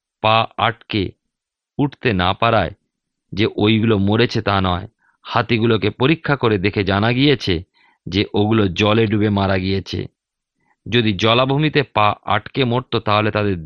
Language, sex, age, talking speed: Bengali, male, 50-69, 125 wpm